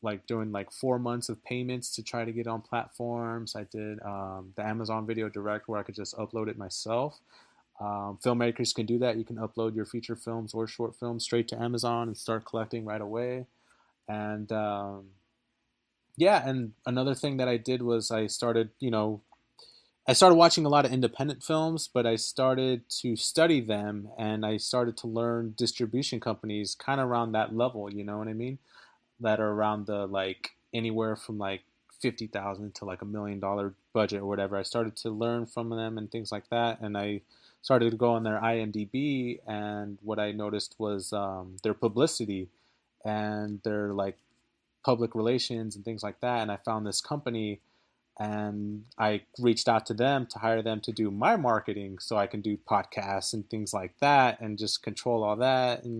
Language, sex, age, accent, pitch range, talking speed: English, male, 20-39, American, 105-120 Hz, 190 wpm